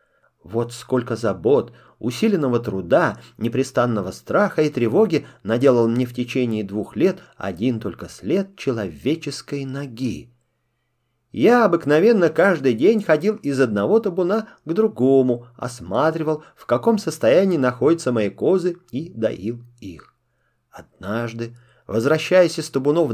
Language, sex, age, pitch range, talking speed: Russian, male, 30-49, 120-185 Hz, 115 wpm